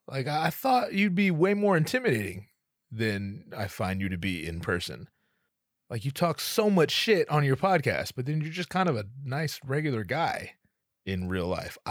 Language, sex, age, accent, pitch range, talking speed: English, male, 30-49, American, 90-140 Hz, 190 wpm